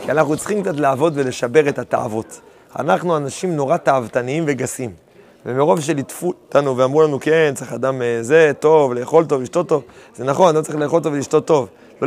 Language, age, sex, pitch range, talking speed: Hebrew, 30-49, male, 150-195 Hz, 190 wpm